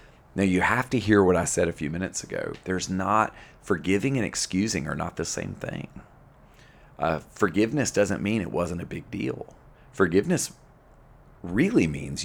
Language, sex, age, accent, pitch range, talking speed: English, male, 30-49, American, 80-100 Hz, 165 wpm